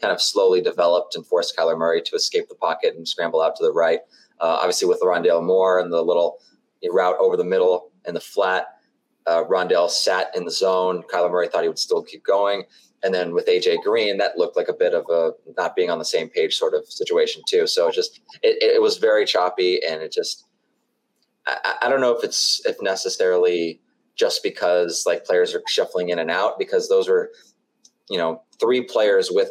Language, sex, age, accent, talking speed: English, male, 20-39, American, 215 wpm